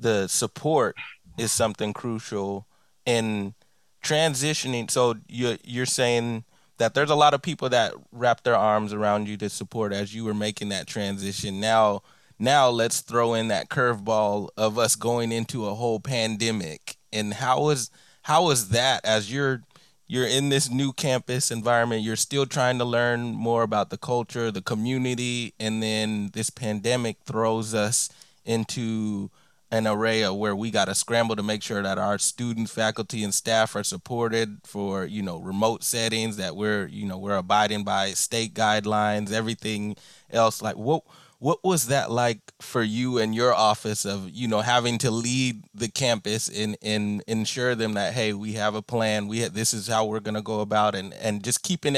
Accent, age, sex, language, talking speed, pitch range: American, 20-39, male, English, 180 wpm, 105-120 Hz